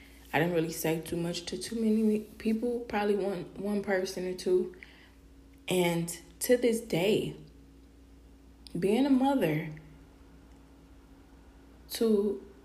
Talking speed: 115 wpm